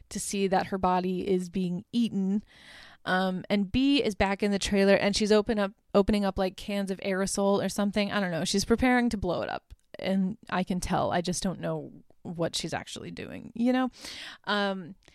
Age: 20-39